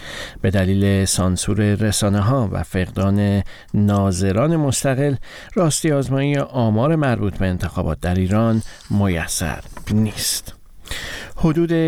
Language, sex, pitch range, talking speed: Persian, male, 100-130 Hz, 100 wpm